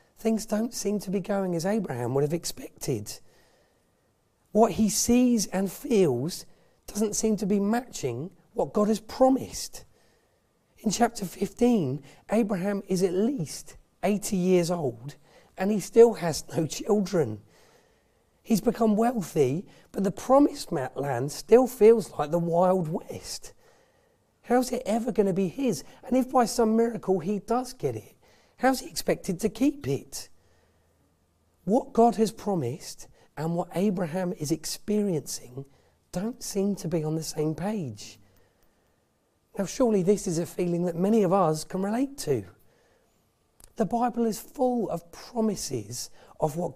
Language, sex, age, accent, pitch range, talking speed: English, male, 40-59, British, 155-220 Hz, 145 wpm